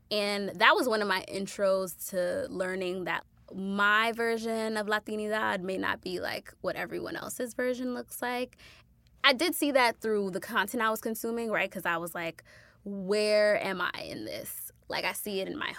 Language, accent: English, American